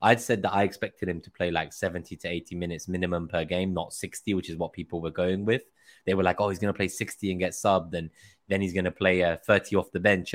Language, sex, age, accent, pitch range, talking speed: English, male, 20-39, British, 85-105 Hz, 275 wpm